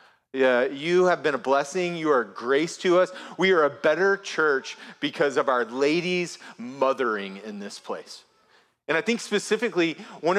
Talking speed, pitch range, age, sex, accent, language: 175 wpm, 140-180 Hz, 30-49, male, American, English